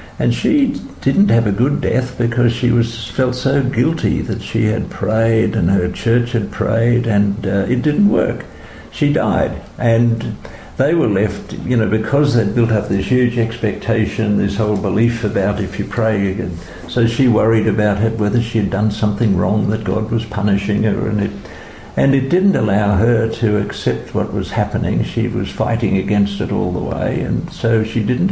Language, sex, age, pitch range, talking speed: English, male, 60-79, 100-115 Hz, 190 wpm